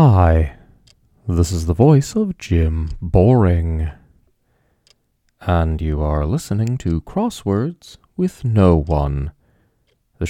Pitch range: 80-120 Hz